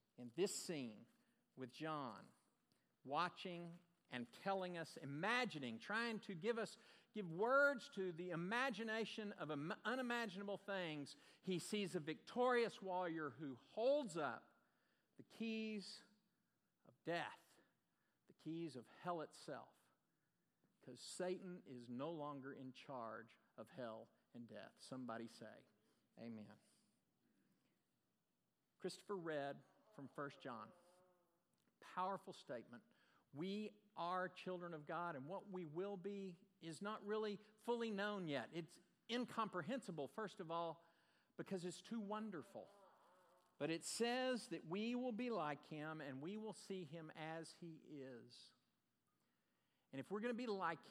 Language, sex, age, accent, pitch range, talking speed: English, male, 50-69, American, 155-215 Hz, 130 wpm